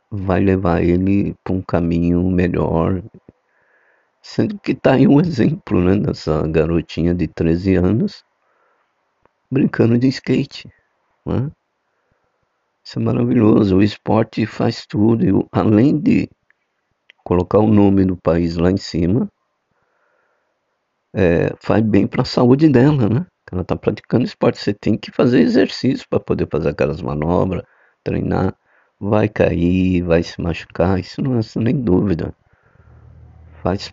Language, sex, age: Portuguese, male, 50-69